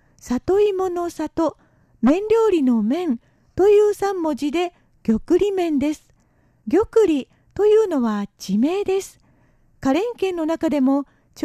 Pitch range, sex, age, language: 290-380 Hz, female, 50-69, Japanese